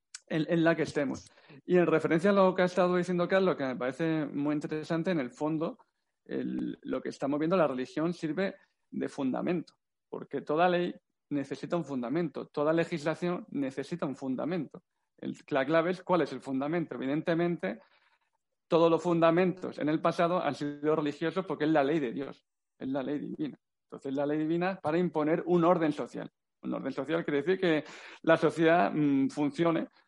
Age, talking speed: 40-59, 180 wpm